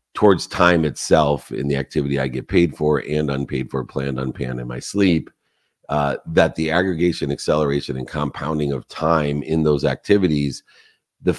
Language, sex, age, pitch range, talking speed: English, male, 50-69, 75-85 Hz, 165 wpm